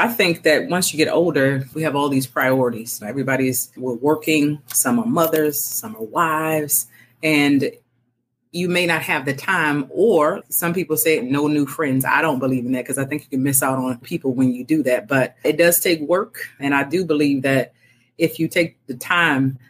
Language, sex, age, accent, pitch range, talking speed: English, female, 30-49, American, 130-155 Hz, 205 wpm